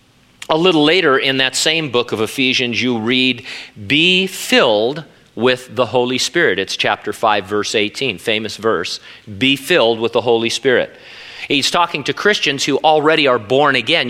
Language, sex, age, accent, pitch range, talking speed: English, male, 40-59, American, 125-170 Hz, 165 wpm